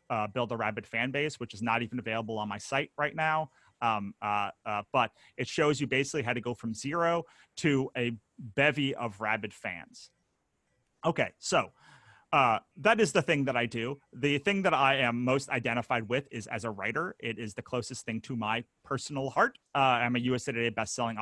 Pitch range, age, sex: 120-140 Hz, 30-49, male